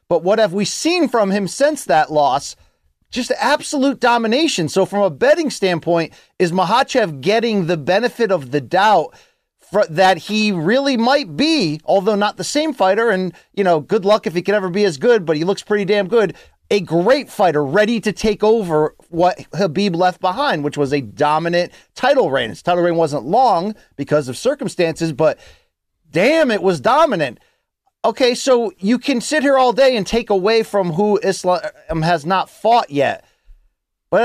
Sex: male